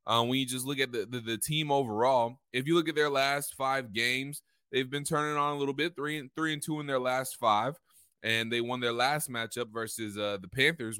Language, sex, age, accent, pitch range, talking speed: English, male, 20-39, American, 115-150 Hz, 245 wpm